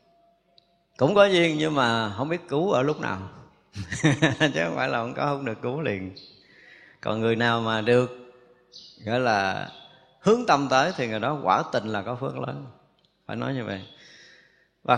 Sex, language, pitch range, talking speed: male, Vietnamese, 120-170 Hz, 180 wpm